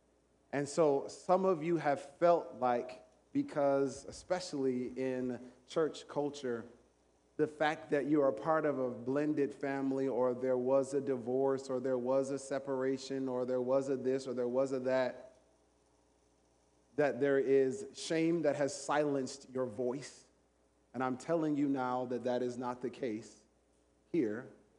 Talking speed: 155 wpm